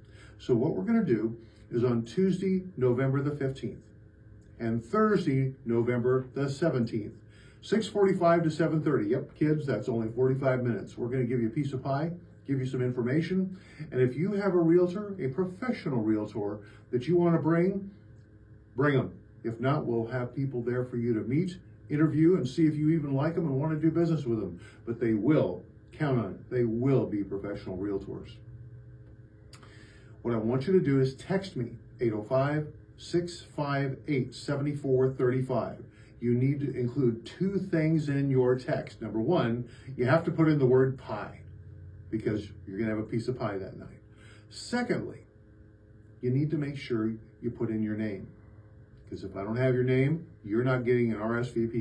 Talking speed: 175 wpm